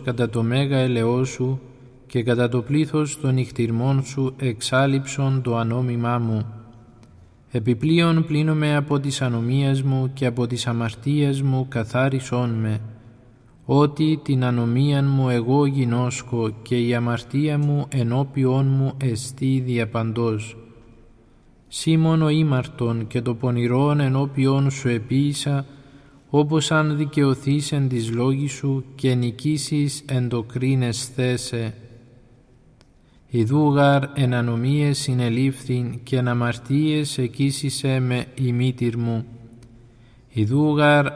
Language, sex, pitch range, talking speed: Greek, male, 120-140 Hz, 110 wpm